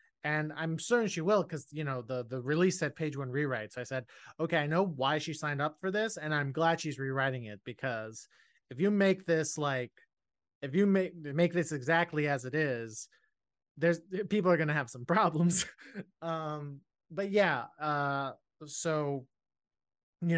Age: 30-49